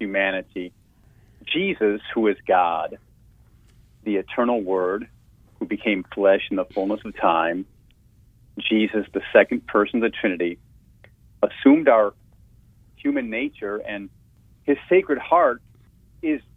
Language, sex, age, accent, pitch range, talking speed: English, male, 40-59, American, 105-120 Hz, 115 wpm